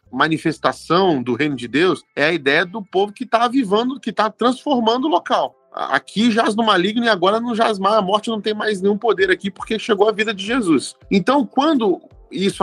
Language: Portuguese